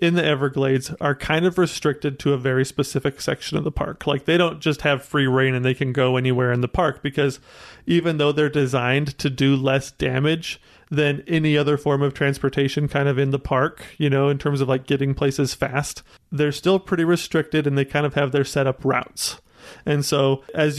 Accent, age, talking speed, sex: American, 30-49, 215 wpm, male